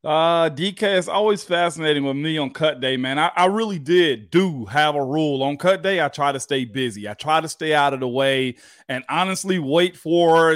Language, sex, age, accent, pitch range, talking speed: English, male, 30-49, American, 150-205 Hz, 220 wpm